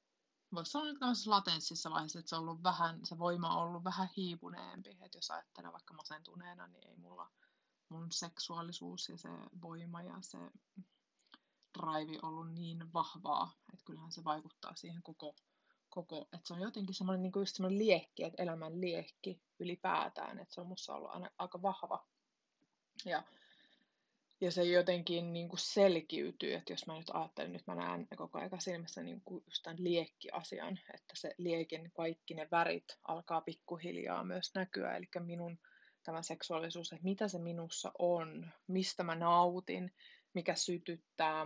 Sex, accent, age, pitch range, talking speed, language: female, native, 20-39, 165-185 Hz, 155 wpm, Finnish